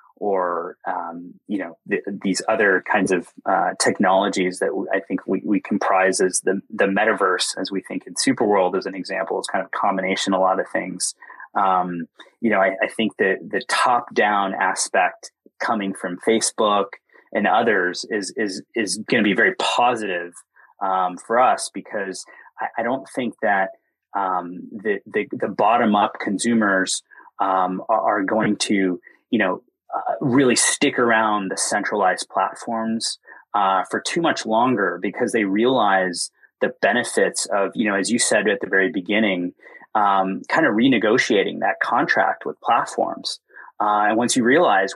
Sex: male